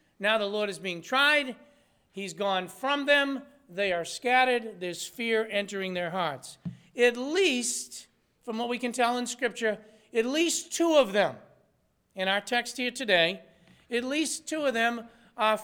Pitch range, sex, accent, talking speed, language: 205-255 Hz, male, American, 165 wpm, English